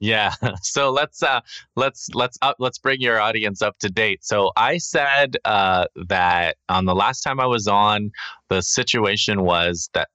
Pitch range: 80-105 Hz